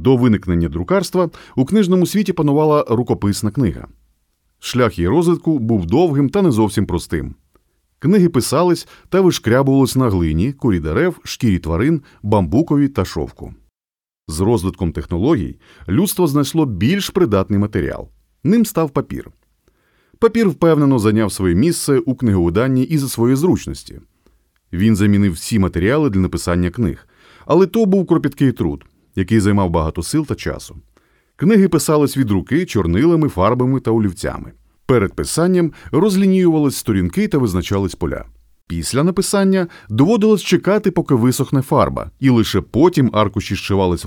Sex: male